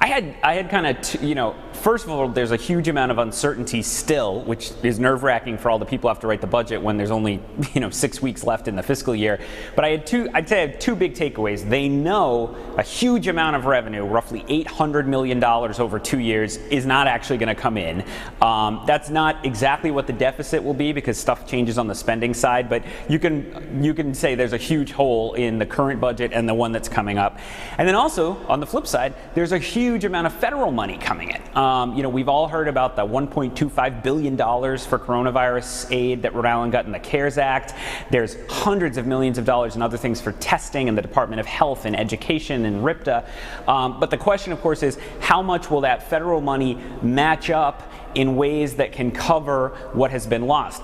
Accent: American